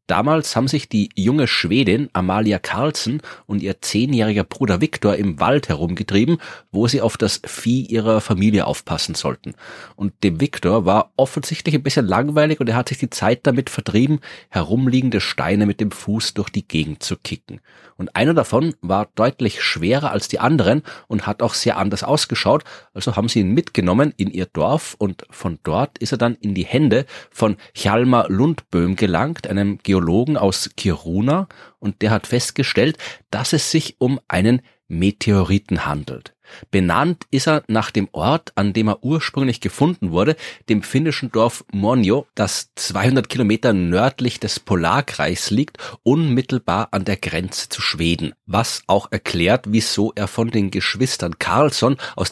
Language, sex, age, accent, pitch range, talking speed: German, male, 30-49, German, 100-130 Hz, 160 wpm